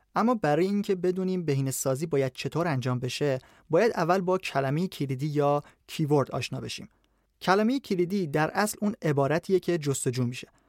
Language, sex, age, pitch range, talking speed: Persian, male, 30-49, 140-180 Hz, 150 wpm